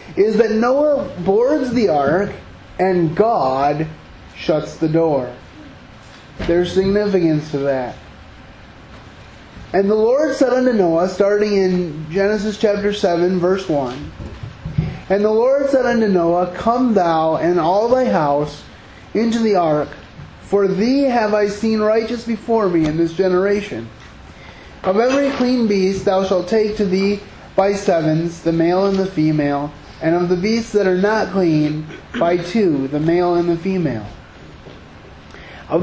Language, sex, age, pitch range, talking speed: English, male, 30-49, 160-210 Hz, 145 wpm